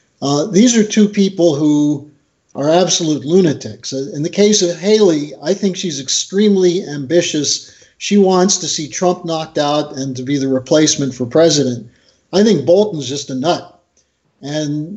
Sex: male